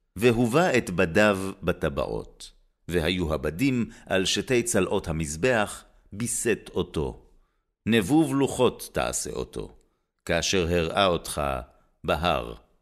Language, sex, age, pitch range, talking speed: Hebrew, male, 50-69, 80-120 Hz, 95 wpm